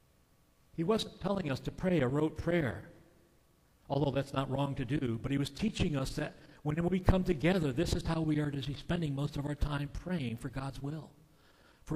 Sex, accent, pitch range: male, American, 120-160 Hz